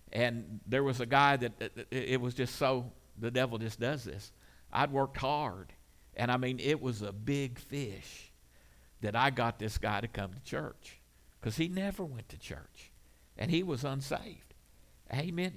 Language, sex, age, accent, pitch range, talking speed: English, male, 50-69, American, 100-125 Hz, 180 wpm